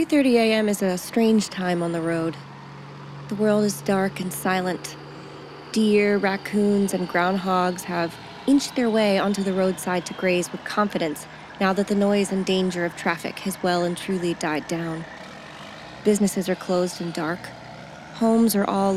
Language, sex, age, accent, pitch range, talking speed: English, female, 20-39, American, 175-205 Hz, 165 wpm